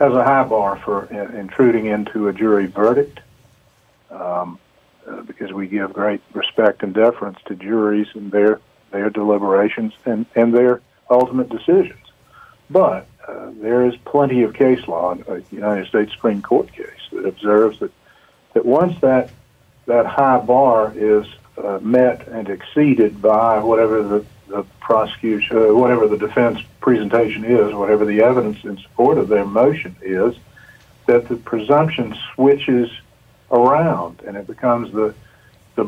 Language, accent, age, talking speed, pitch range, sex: English, American, 50-69, 150 wpm, 105-125 Hz, male